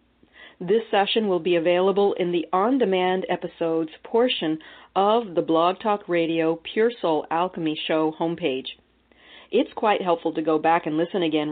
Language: English